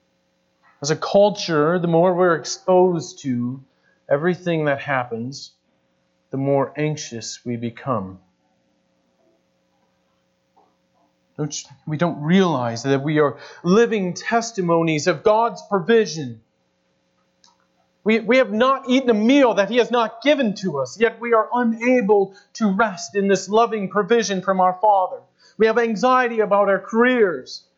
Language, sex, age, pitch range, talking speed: English, male, 40-59, 140-215 Hz, 135 wpm